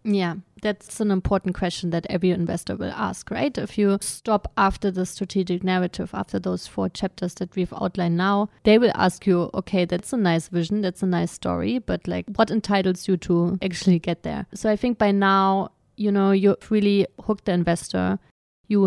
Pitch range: 175-205 Hz